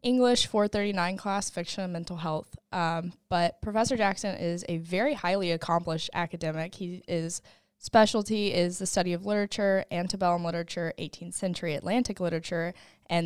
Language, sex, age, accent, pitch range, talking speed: English, female, 10-29, American, 165-185 Hz, 140 wpm